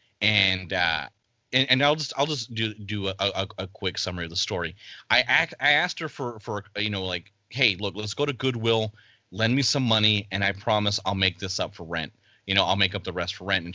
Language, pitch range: English, 100-120 Hz